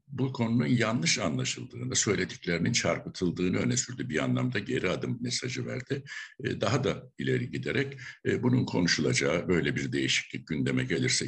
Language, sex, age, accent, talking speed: Turkish, male, 60-79, native, 135 wpm